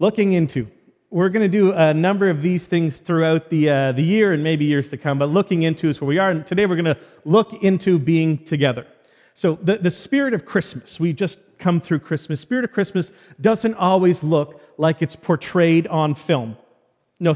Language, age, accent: English, 40-59, American